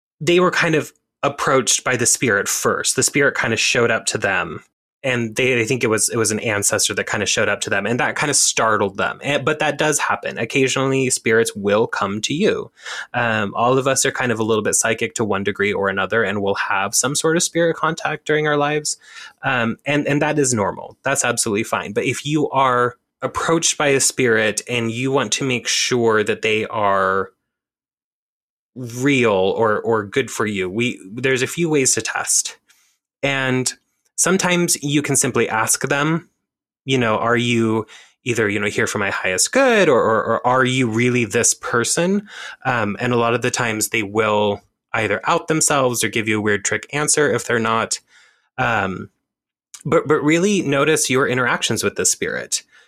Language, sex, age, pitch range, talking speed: English, male, 20-39, 115-140 Hz, 200 wpm